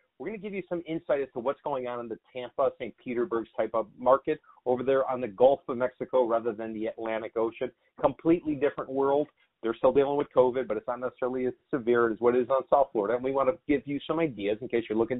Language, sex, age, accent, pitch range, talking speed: English, male, 40-59, American, 120-160 Hz, 255 wpm